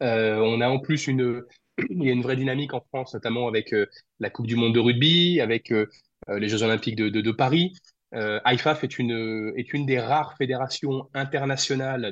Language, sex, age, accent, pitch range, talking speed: French, male, 20-39, French, 115-140 Hz, 210 wpm